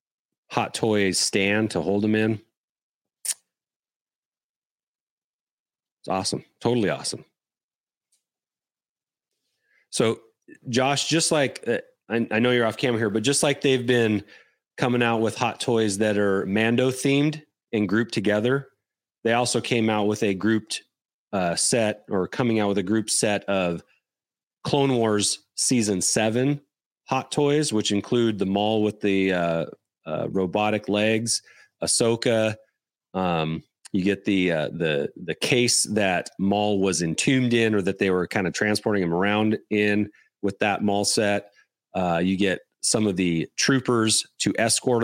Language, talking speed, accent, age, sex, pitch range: English, 145 wpm, American, 30-49, male, 100-125 Hz